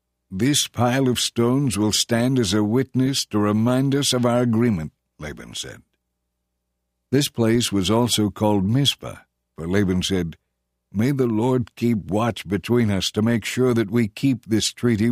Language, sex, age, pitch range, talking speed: English, male, 60-79, 95-125 Hz, 165 wpm